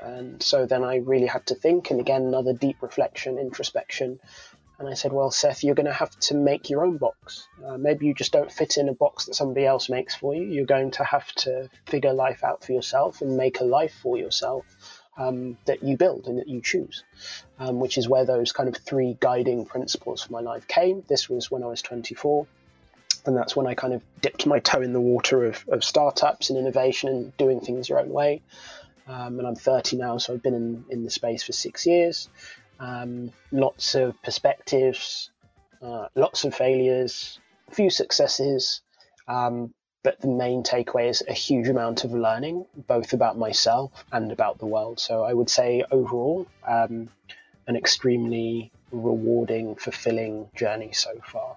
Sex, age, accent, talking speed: male, 20-39, British, 195 wpm